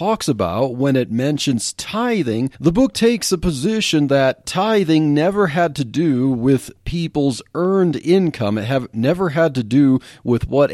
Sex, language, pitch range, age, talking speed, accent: male, English, 120-165 Hz, 40-59, 160 wpm, American